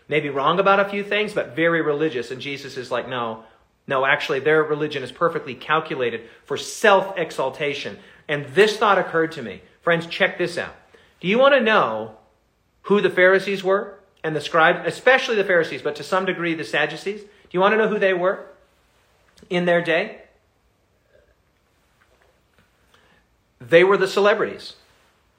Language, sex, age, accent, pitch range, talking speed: English, male, 40-59, American, 155-205 Hz, 165 wpm